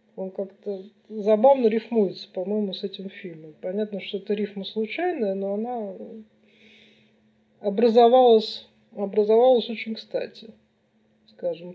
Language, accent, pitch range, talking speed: Russian, native, 195-245 Hz, 100 wpm